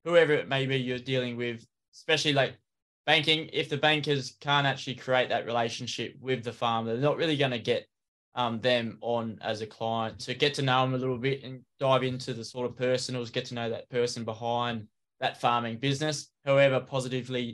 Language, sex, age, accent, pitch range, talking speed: English, male, 20-39, Australian, 120-135 Hz, 200 wpm